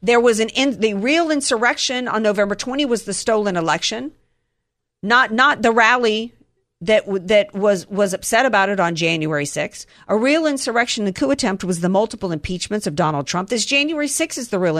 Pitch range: 180-250 Hz